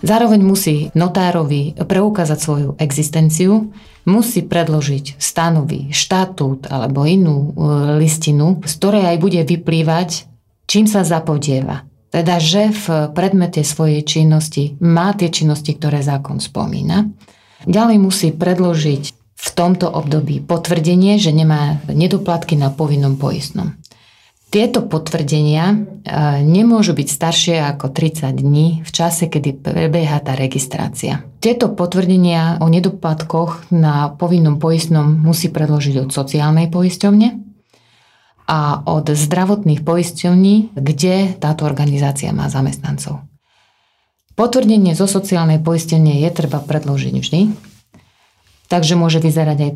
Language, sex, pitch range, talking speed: Slovak, female, 150-180 Hz, 110 wpm